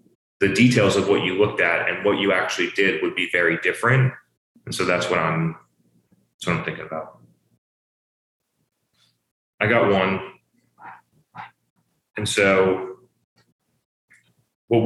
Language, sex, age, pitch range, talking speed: English, male, 30-49, 90-110 Hz, 130 wpm